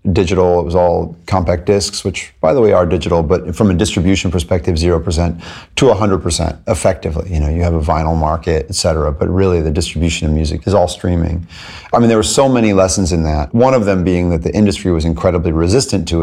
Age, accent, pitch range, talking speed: 30-49, American, 85-105 Hz, 225 wpm